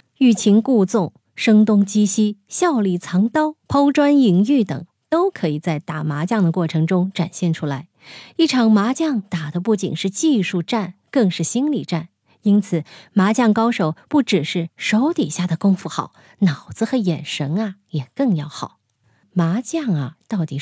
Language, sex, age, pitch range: Chinese, female, 20-39, 165-230 Hz